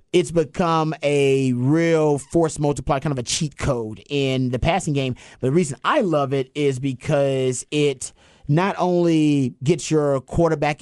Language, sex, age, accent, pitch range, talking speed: English, male, 30-49, American, 125-155 Hz, 155 wpm